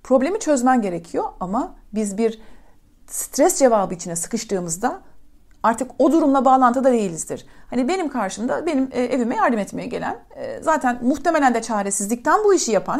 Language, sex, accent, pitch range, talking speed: Turkish, female, native, 205-280 Hz, 140 wpm